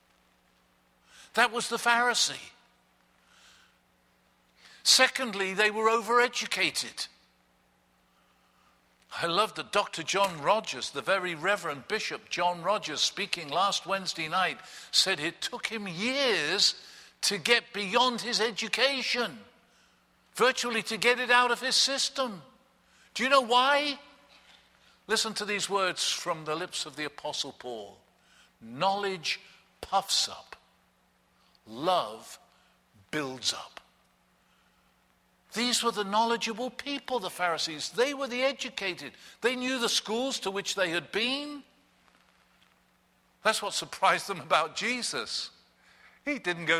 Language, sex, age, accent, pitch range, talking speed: English, male, 50-69, British, 150-240 Hz, 120 wpm